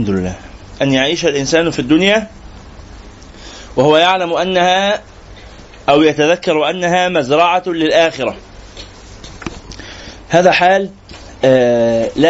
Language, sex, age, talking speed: Arabic, male, 30-49, 80 wpm